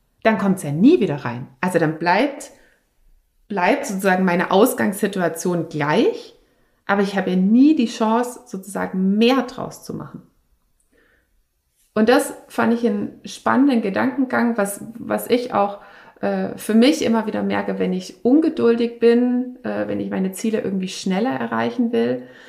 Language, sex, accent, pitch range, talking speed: German, female, German, 185-240 Hz, 150 wpm